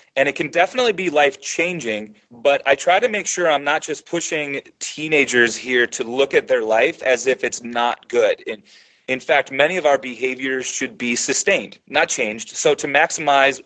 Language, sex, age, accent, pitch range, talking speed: English, male, 30-49, American, 120-165 Hz, 190 wpm